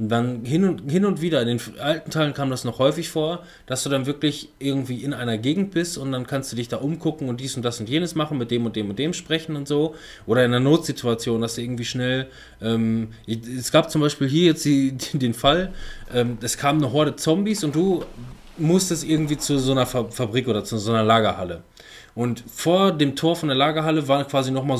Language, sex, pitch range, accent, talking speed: German, male, 125-160 Hz, German, 225 wpm